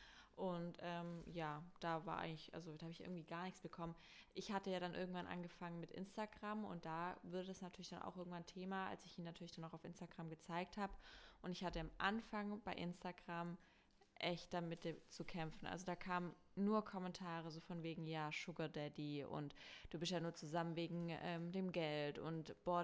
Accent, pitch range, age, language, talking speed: German, 165-185 Hz, 20-39, German, 195 wpm